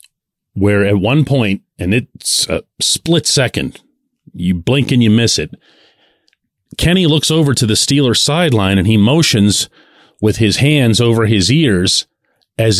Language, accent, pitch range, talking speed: English, American, 95-130 Hz, 150 wpm